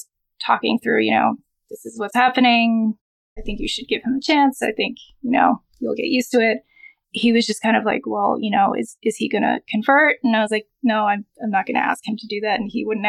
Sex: female